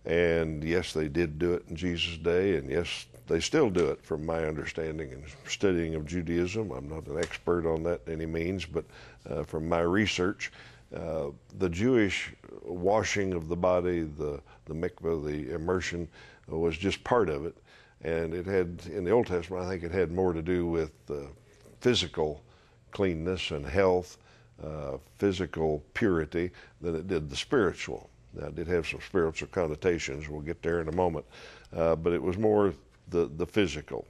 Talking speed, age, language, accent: 180 wpm, 60-79, English, American